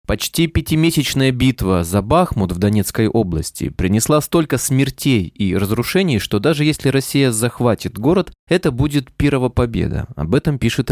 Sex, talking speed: male, 145 wpm